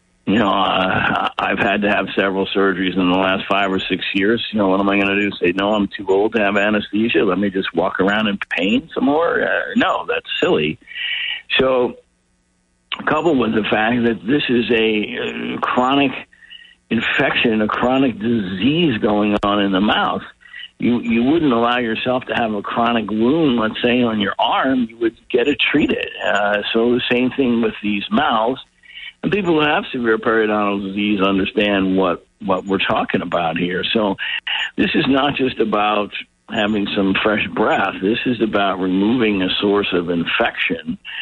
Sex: male